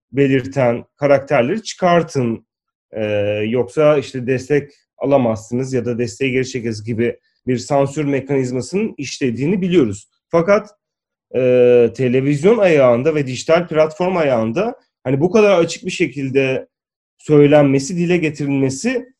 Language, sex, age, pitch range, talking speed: Turkish, male, 30-49, 125-165 Hz, 110 wpm